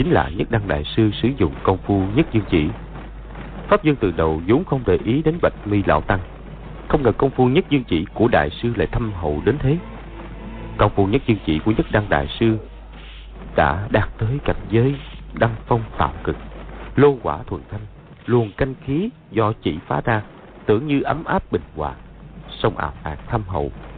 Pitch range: 95-130 Hz